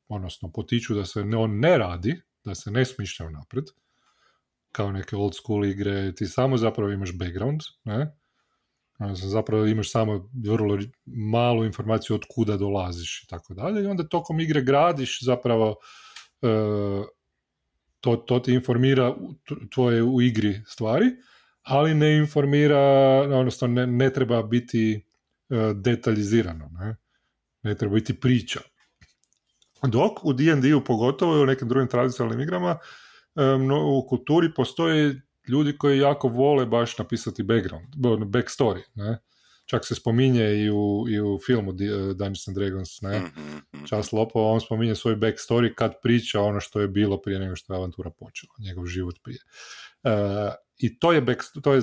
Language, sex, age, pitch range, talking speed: Croatian, male, 30-49, 105-130 Hz, 145 wpm